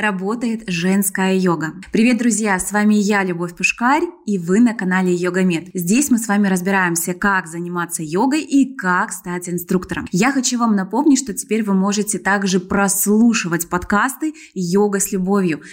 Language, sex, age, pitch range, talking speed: Russian, female, 20-39, 190-235 Hz, 155 wpm